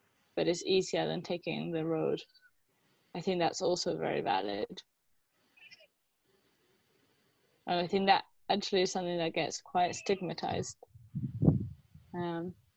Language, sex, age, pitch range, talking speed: English, female, 20-39, 170-195 Hz, 115 wpm